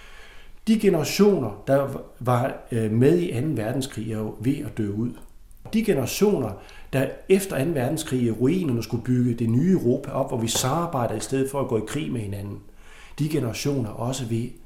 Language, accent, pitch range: Danish, native, 115-165 Hz